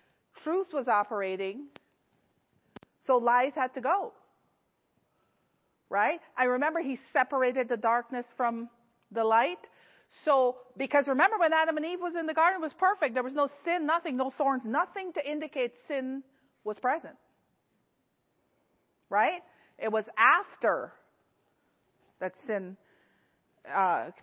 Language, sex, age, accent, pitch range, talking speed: English, female, 40-59, American, 205-285 Hz, 125 wpm